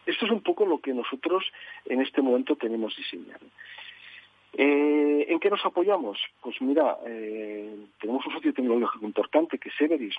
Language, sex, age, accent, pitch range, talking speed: Spanish, male, 40-59, Spanish, 120-165 Hz, 165 wpm